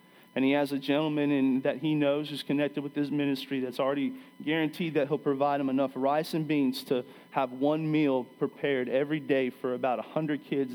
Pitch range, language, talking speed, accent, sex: 140-170 Hz, English, 200 wpm, American, male